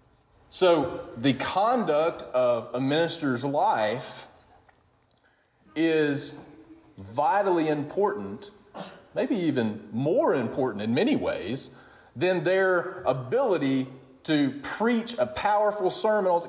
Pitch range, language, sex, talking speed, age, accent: 125-190 Hz, English, male, 90 wpm, 40-59, American